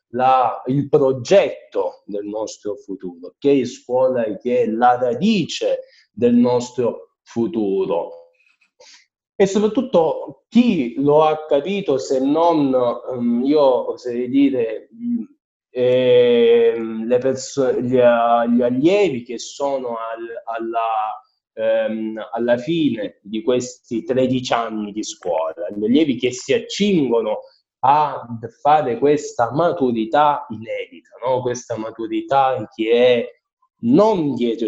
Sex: male